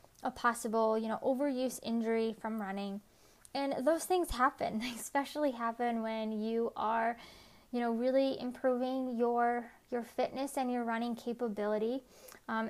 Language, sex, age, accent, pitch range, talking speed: English, female, 10-29, American, 215-255 Hz, 140 wpm